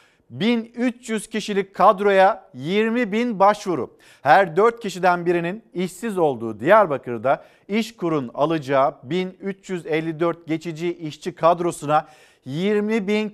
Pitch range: 150-200 Hz